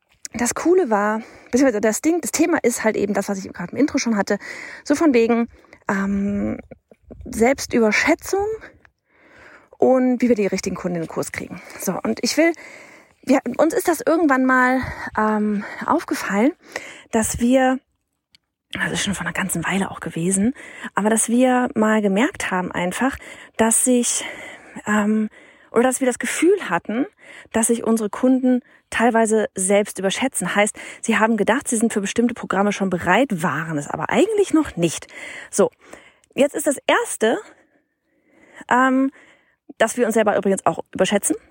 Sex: female